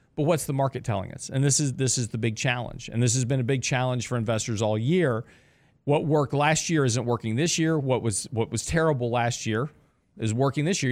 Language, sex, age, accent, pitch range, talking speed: English, male, 50-69, American, 115-150 Hz, 240 wpm